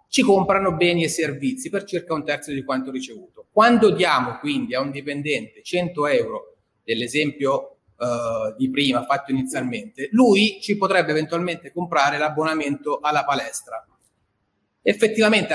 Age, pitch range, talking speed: 30-49, 135-175 Hz, 130 wpm